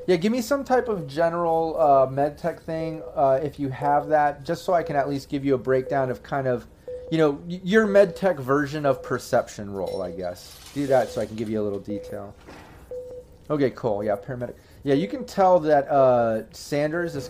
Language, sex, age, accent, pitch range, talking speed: English, male, 30-49, American, 120-145 Hz, 215 wpm